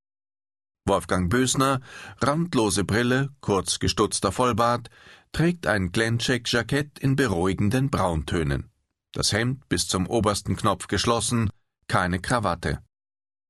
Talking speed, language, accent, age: 100 wpm, German, German, 40-59